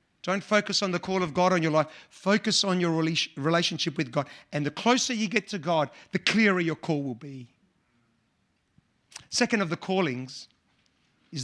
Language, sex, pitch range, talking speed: English, male, 170-220 Hz, 180 wpm